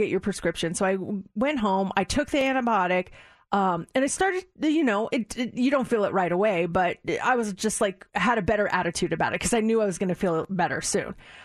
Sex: female